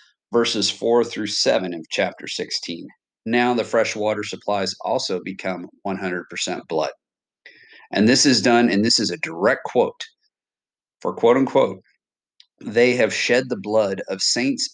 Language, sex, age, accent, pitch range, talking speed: English, male, 40-59, American, 100-120 Hz, 150 wpm